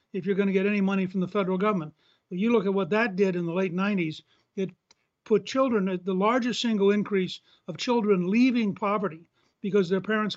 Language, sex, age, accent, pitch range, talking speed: English, male, 60-79, American, 180-210 Hz, 210 wpm